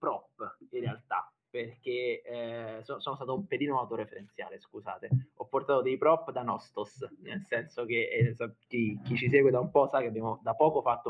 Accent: native